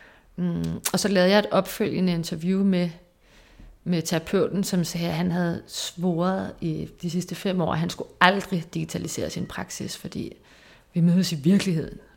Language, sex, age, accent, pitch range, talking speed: Danish, female, 30-49, native, 170-190 Hz, 170 wpm